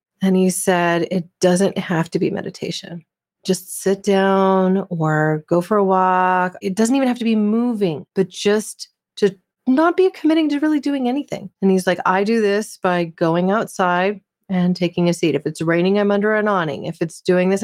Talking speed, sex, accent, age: 195 wpm, female, American, 30-49